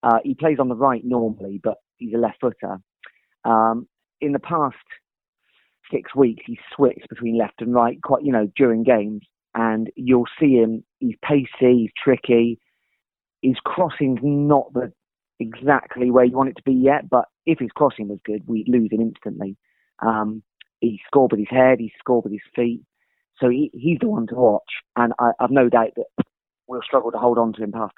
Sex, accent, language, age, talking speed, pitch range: male, British, English, 30-49, 195 wpm, 110-135 Hz